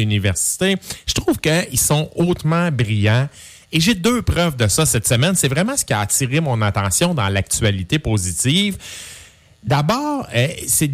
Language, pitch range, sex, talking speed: French, 115-175 Hz, male, 155 wpm